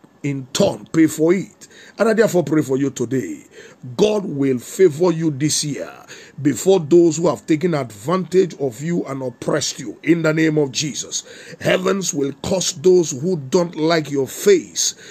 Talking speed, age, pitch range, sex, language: 170 wpm, 50-69, 145-175 Hz, male, English